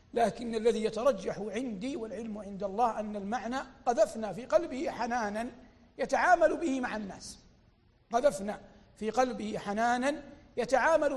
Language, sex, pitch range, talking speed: Arabic, male, 205-260 Hz, 120 wpm